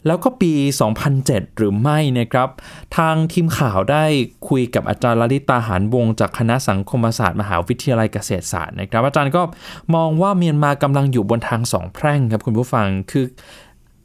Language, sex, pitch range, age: Thai, male, 115-160 Hz, 20-39